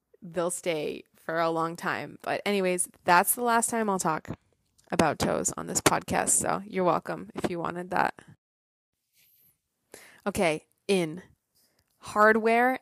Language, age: English, 20-39